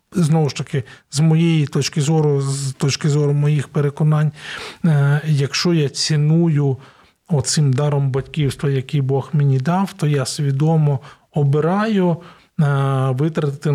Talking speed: 120 wpm